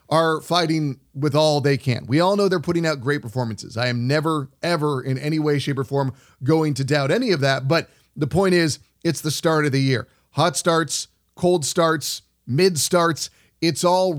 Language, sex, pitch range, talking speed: English, male, 135-165 Hz, 200 wpm